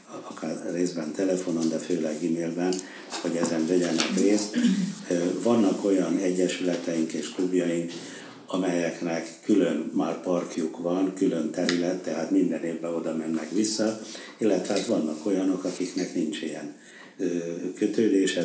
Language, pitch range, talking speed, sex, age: Hungarian, 85-95 Hz, 115 wpm, male, 60-79